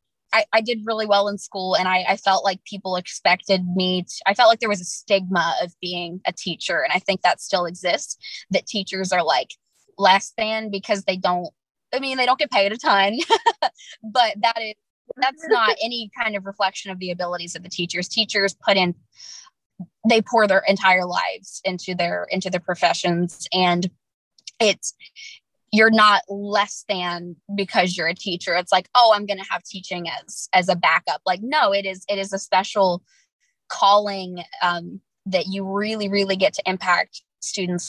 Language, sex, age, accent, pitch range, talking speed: English, female, 20-39, American, 180-215 Hz, 185 wpm